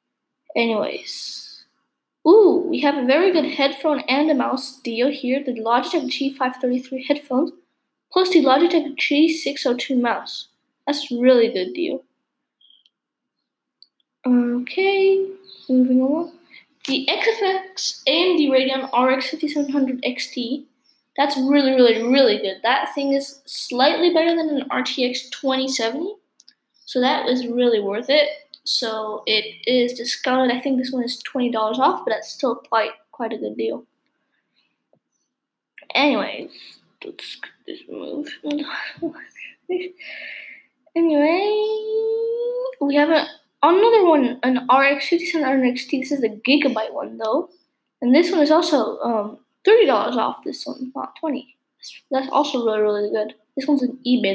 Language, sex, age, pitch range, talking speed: English, female, 10-29, 255-310 Hz, 125 wpm